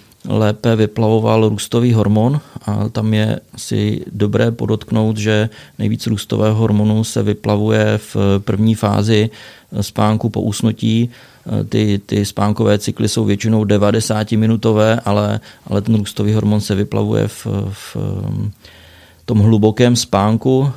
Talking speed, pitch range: 120 wpm, 100-110 Hz